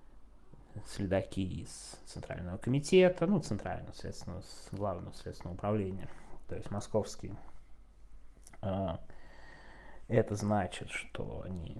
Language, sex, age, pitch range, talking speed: Russian, male, 20-39, 95-135 Hz, 85 wpm